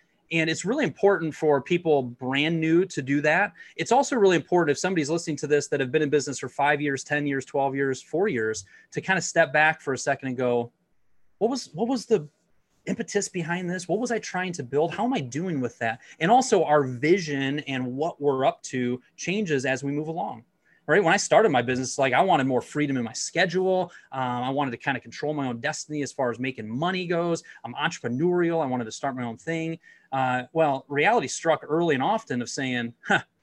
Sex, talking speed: male, 230 wpm